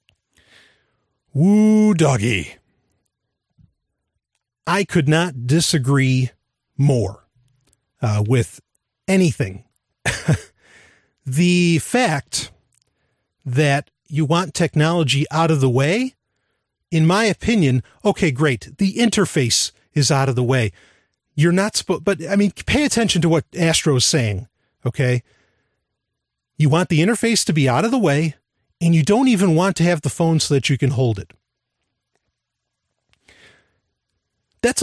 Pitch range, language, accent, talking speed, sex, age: 135-190 Hz, English, American, 125 wpm, male, 40-59